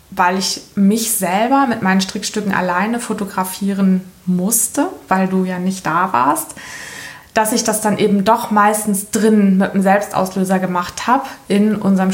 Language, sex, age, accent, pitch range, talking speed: German, female, 20-39, German, 185-215 Hz, 155 wpm